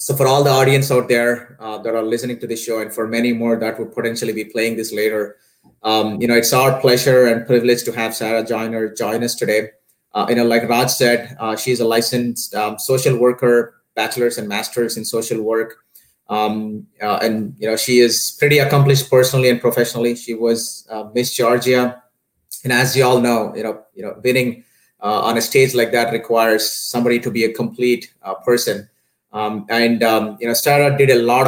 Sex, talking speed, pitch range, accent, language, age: male, 210 wpm, 115-125 Hz, Indian, English, 30-49